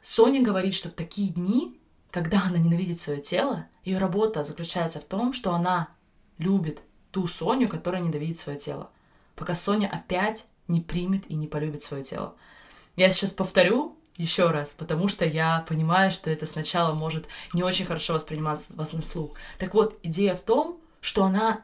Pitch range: 160-210 Hz